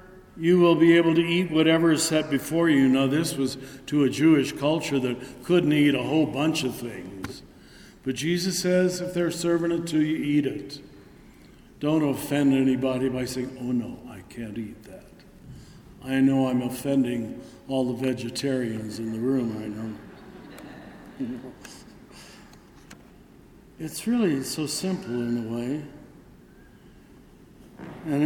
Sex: male